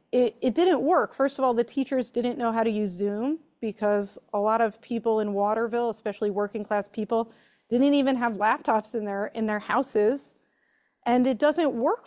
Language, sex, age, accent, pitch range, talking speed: English, female, 30-49, American, 210-260 Hz, 195 wpm